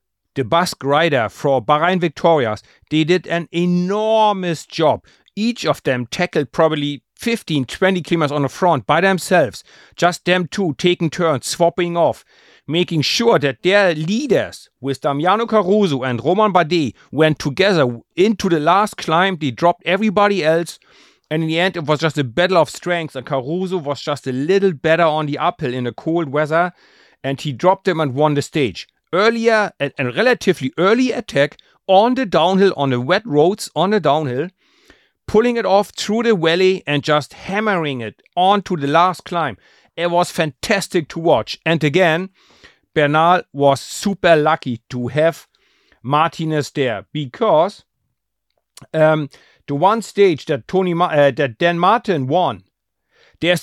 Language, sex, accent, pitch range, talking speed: English, male, German, 145-190 Hz, 160 wpm